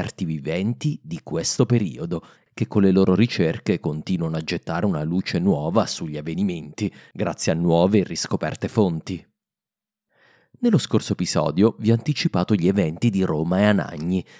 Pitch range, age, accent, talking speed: 85-120 Hz, 30-49, native, 140 wpm